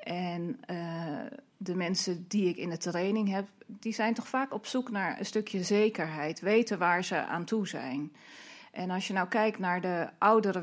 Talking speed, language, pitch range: 190 wpm, Dutch, 170-225 Hz